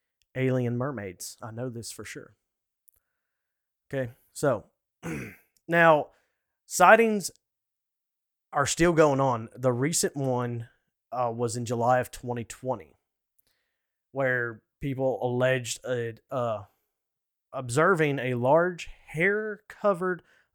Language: English